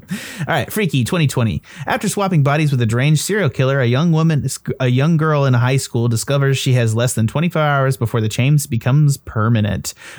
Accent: American